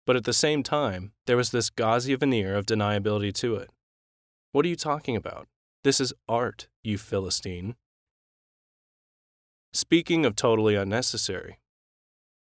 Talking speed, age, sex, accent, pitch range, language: 135 wpm, 20-39, male, American, 100-120 Hz, English